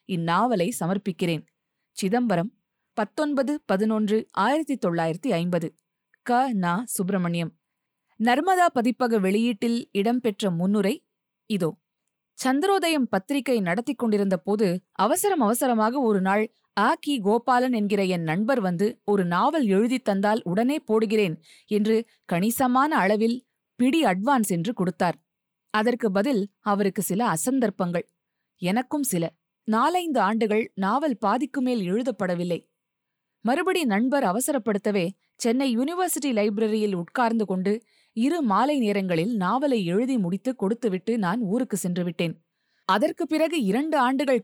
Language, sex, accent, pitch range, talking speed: Tamil, female, native, 190-250 Hz, 100 wpm